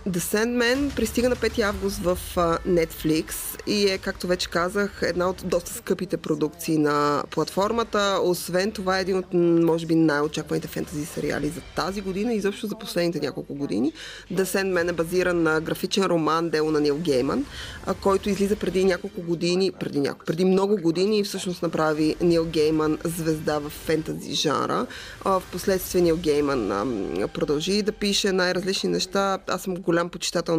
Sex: female